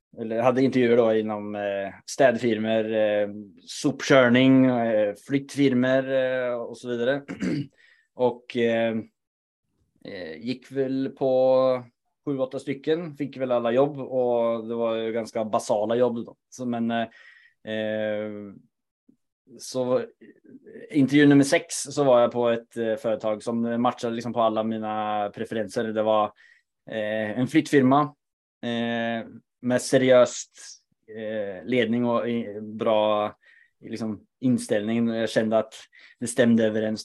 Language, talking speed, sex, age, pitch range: Swedish, 100 wpm, male, 20-39, 110-130 Hz